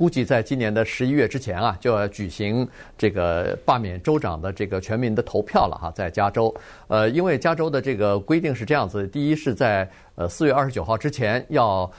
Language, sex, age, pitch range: Chinese, male, 50-69, 100-135 Hz